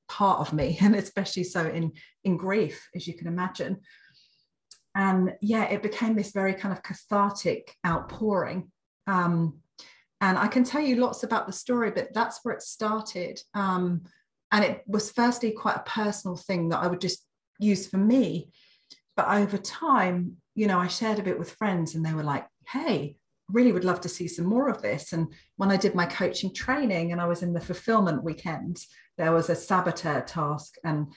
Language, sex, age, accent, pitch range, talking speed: English, female, 40-59, British, 170-210 Hz, 190 wpm